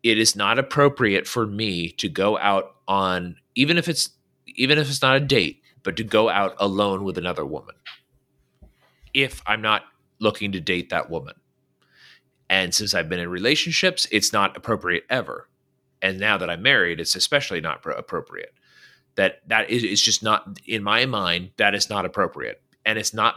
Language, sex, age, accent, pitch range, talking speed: English, male, 30-49, American, 90-120 Hz, 180 wpm